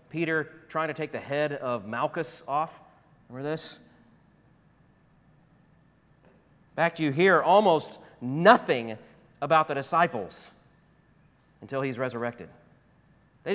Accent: American